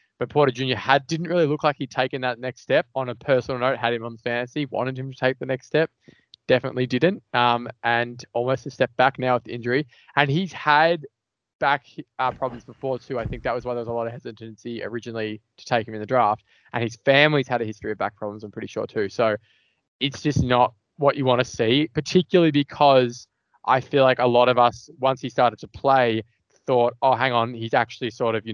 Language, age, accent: English, 20-39, Australian